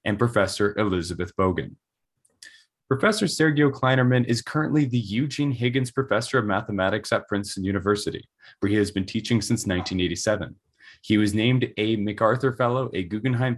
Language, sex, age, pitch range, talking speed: English, male, 20-39, 105-125 Hz, 145 wpm